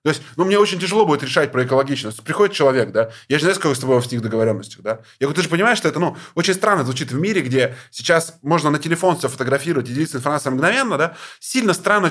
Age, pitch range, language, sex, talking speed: 20-39, 125-170 Hz, Russian, male, 255 wpm